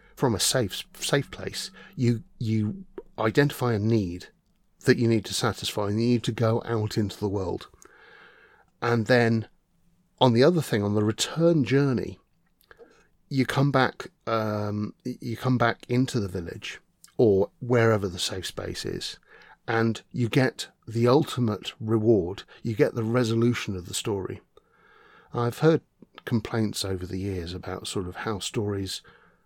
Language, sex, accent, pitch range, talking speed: English, male, British, 100-125 Hz, 150 wpm